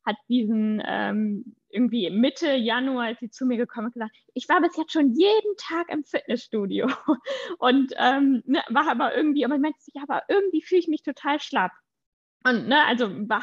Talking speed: 190 wpm